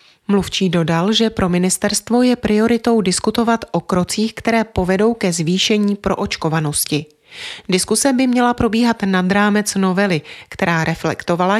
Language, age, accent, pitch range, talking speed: Czech, 30-49, native, 175-225 Hz, 130 wpm